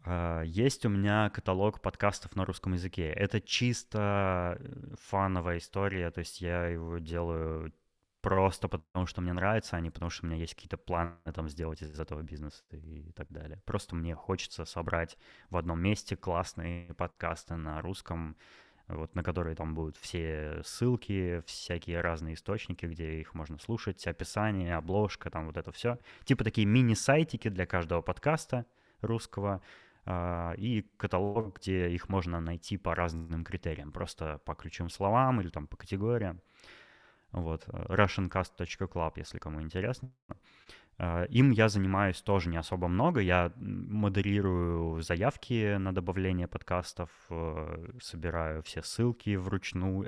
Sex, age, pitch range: male, 20-39, 85-100 Hz